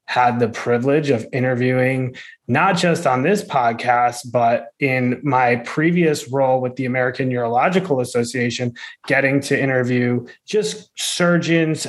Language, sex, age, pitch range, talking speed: English, male, 20-39, 125-150 Hz, 125 wpm